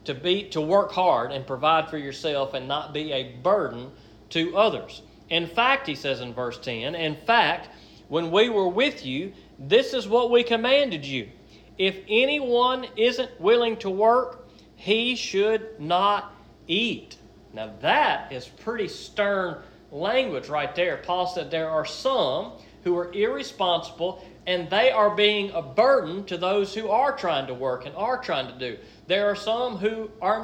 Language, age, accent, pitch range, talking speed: English, 40-59, American, 165-220 Hz, 170 wpm